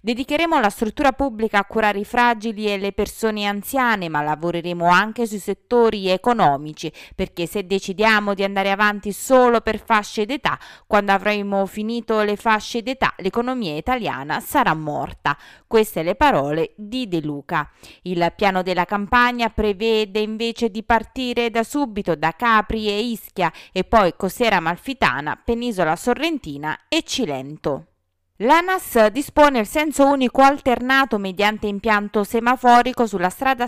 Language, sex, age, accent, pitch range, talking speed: Italian, female, 20-39, native, 185-240 Hz, 135 wpm